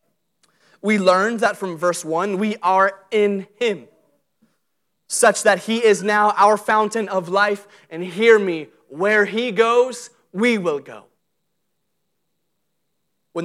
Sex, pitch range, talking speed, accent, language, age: male, 175-220 Hz, 130 wpm, American, English, 30-49